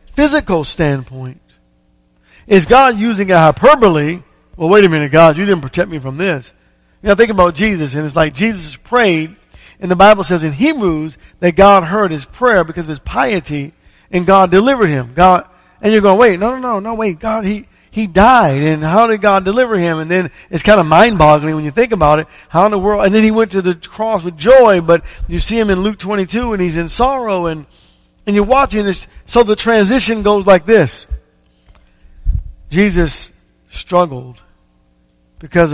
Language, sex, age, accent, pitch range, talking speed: English, male, 50-69, American, 130-200 Hz, 195 wpm